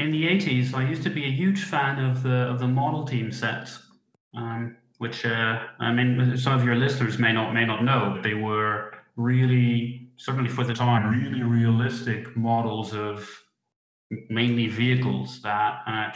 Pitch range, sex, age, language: 110-125 Hz, male, 30-49, English